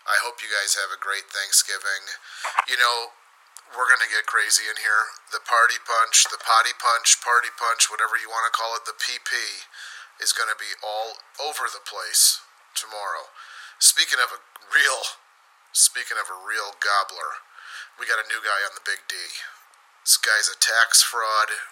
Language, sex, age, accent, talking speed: English, male, 30-49, American, 180 wpm